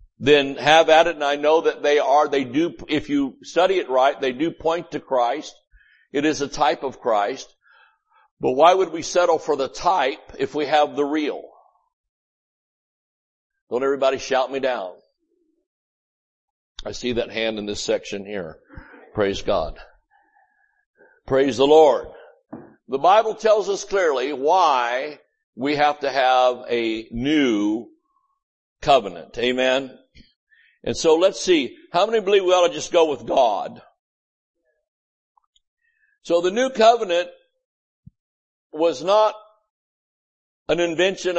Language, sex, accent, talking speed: English, male, American, 140 wpm